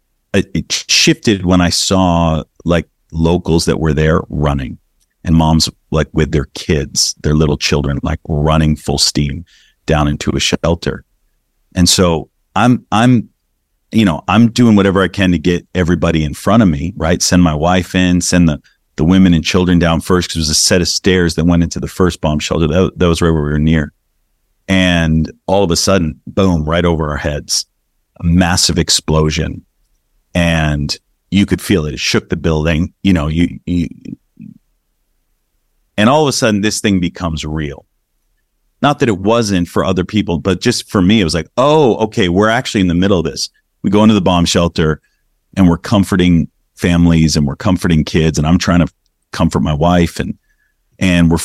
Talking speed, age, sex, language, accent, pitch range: 190 wpm, 40-59, male, English, American, 80-95 Hz